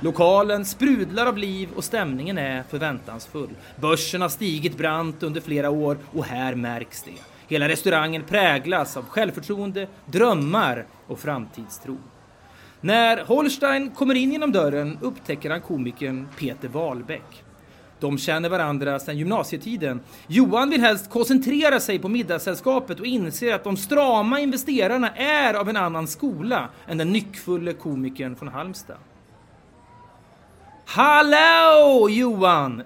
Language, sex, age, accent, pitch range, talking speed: Swedish, male, 30-49, native, 145-230 Hz, 125 wpm